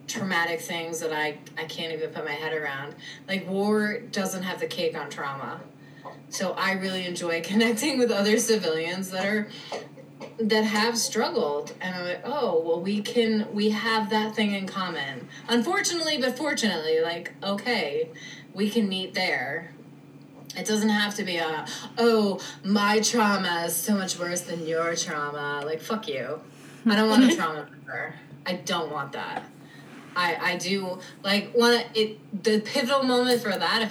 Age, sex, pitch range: 20-39, female, 170-230 Hz